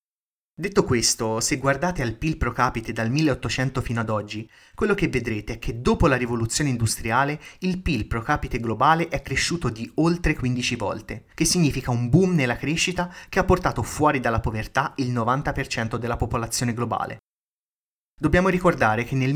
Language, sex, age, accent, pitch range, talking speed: Italian, male, 30-49, native, 120-155 Hz, 165 wpm